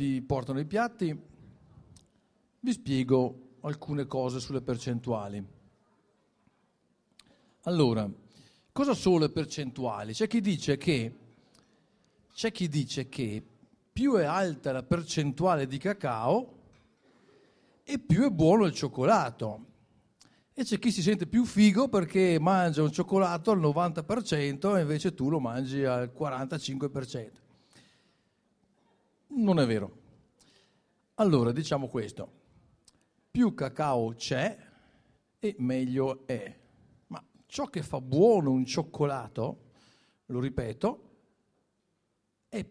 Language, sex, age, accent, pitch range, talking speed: Italian, male, 50-69, native, 130-195 Hz, 110 wpm